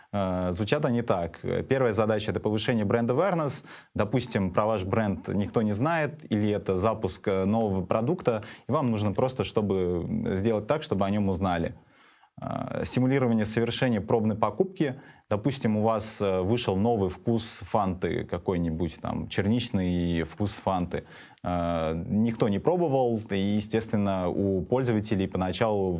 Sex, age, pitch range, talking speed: male, 20-39, 95-120 Hz, 130 wpm